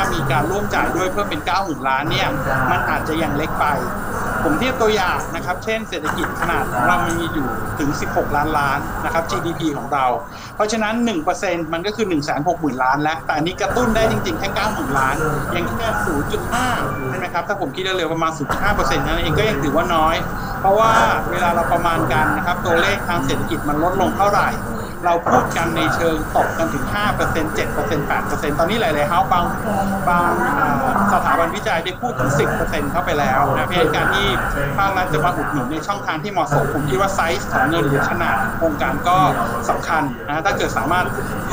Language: Thai